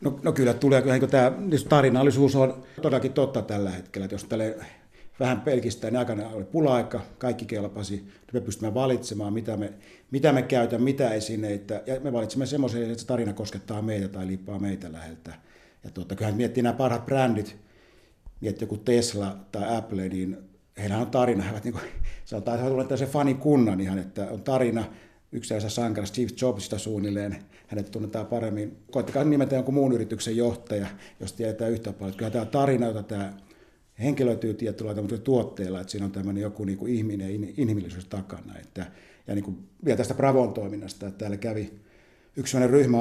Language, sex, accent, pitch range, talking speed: Finnish, male, native, 100-125 Hz, 175 wpm